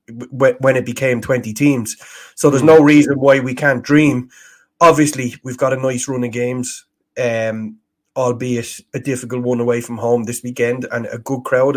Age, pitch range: 20-39, 125-145 Hz